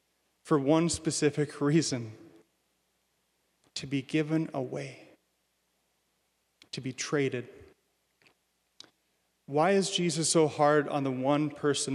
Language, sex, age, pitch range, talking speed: English, male, 30-49, 130-155 Hz, 100 wpm